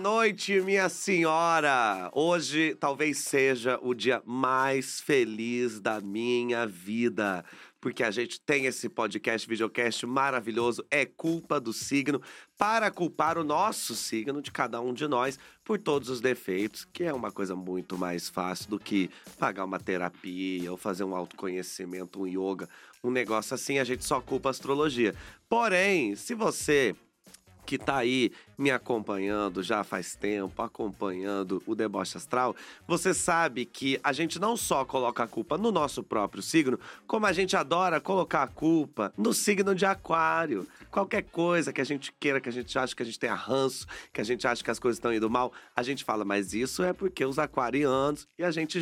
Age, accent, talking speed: 30-49, Brazilian, 175 wpm